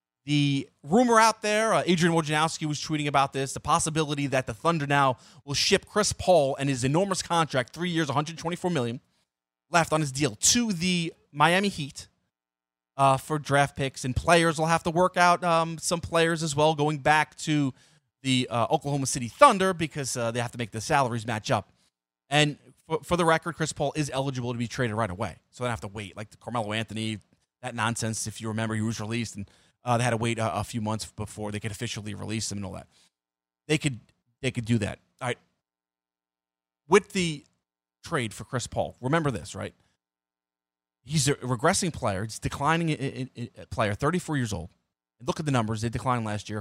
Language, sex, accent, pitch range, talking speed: English, male, American, 110-160 Hz, 205 wpm